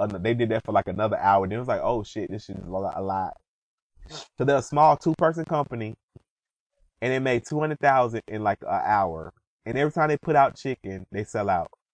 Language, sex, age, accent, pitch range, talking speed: English, male, 20-39, American, 105-145 Hz, 210 wpm